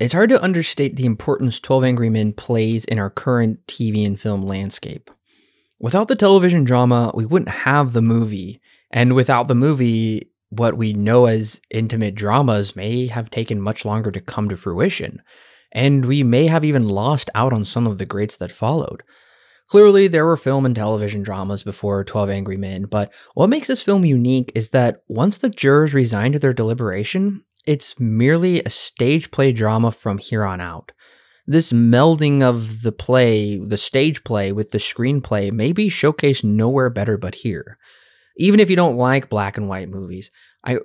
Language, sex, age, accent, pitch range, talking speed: English, male, 20-39, American, 105-140 Hz, 180 wpm